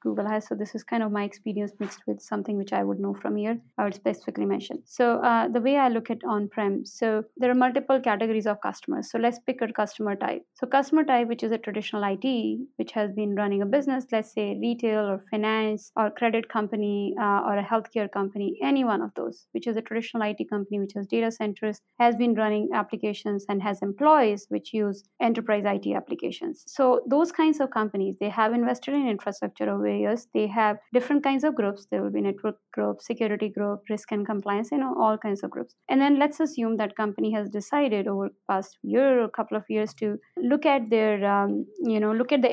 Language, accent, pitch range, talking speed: English, Indian, 205-245 Hz, 215 wpm